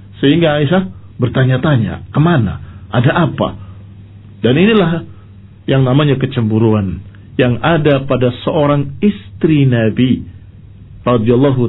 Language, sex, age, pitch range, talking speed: Indonesian, male, 50-69, 105-140 Hz, 90 wpm